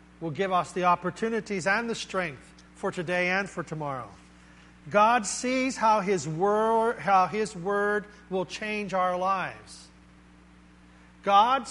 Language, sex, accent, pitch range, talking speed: English, male, American, 180-240 Hz, 125 wpm